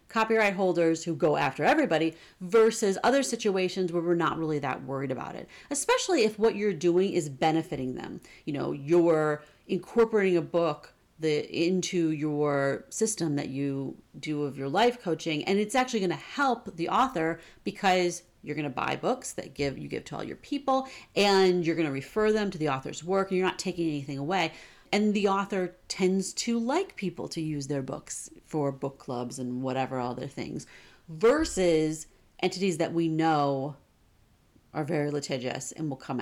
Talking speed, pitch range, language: 180 wpm, 150-200 Hz, English